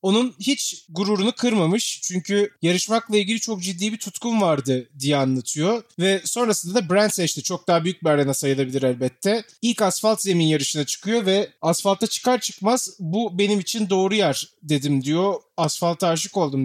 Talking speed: 160 wpm